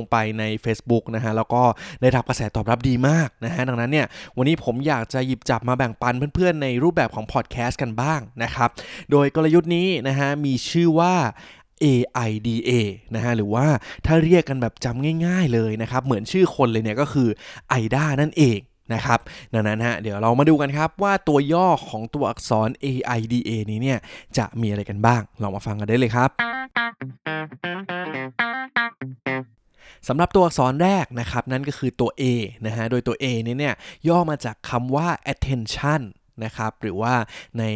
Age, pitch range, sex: 20-39, 115-145 Hz, male